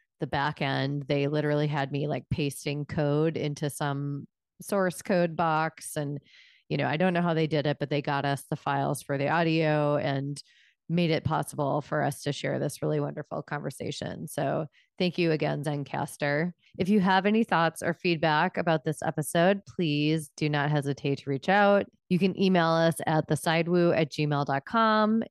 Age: 30-49